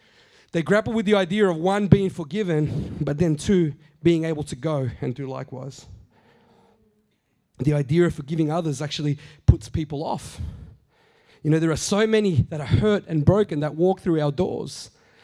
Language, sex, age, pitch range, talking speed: English, male, 30-49, 155-230 Hz, 175 wpm